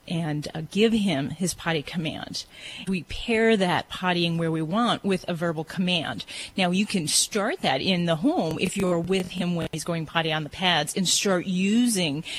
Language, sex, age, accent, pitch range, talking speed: English, female, 30-49, American, 155-190 Hz, 195 wpm